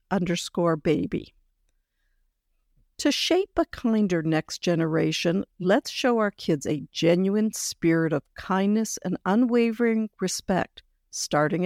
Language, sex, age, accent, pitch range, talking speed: English, female, 60-79, American, 170-230 Hz, 110 wpm